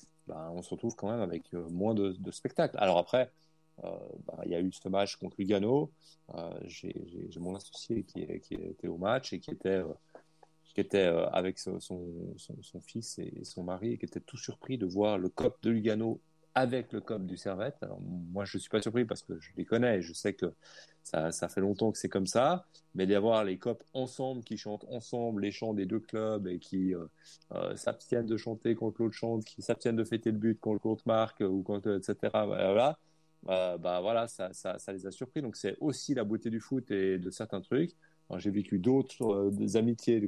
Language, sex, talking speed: French, male, 225 wpm